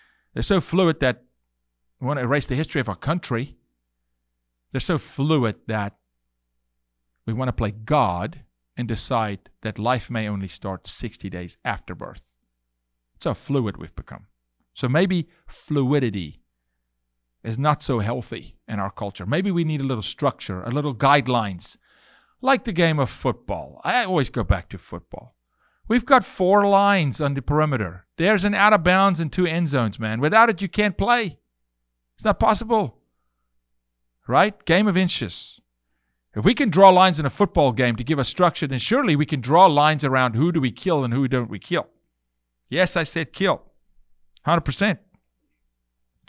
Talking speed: 165 wpm